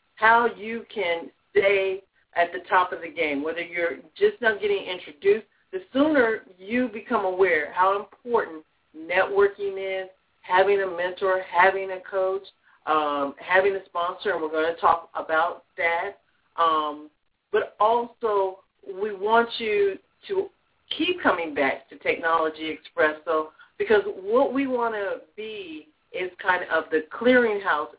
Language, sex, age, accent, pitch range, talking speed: English, female, 50-69, American, 185-255 Hz, 145 wpm